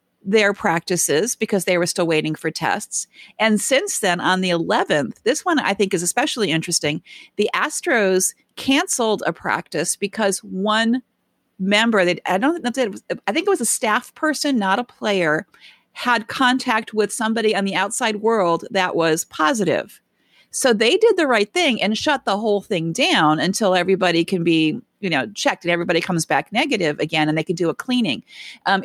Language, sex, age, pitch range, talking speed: English, female, 40-59, 185-235 Hz, 175 wpm